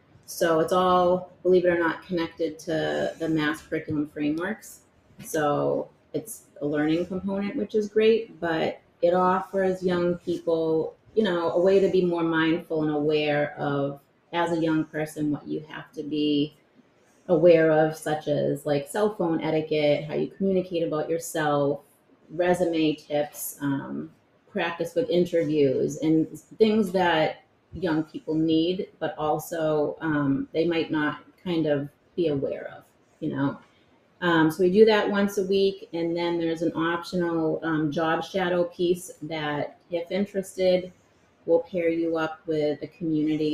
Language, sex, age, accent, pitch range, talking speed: English, female, 30-49, American, 150-175 Hz, 155 wpm